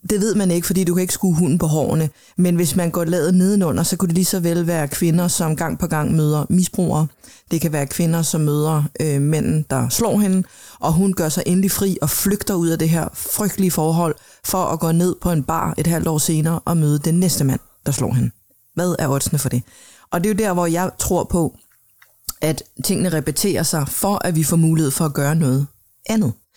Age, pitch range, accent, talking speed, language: 30-49, 160-195 Hz, native, 235 wpm, Danish